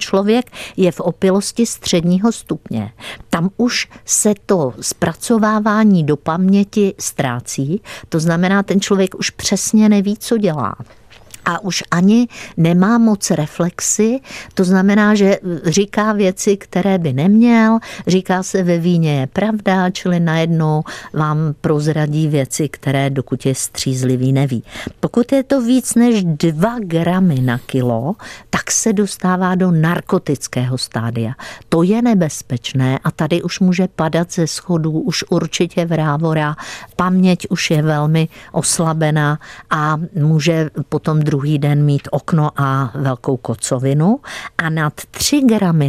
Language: Czech